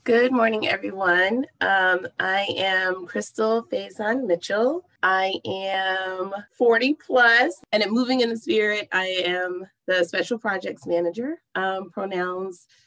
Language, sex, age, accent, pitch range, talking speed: English, female, 30-49, American, 170-215 Hz, 115 wpm